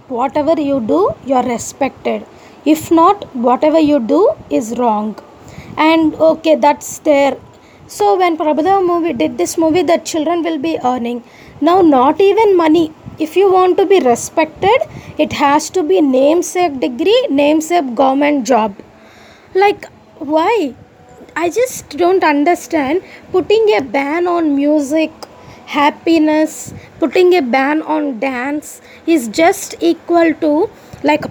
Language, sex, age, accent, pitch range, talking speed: English, female, 20-39, Indian, 275-335 Hz, 130 wpm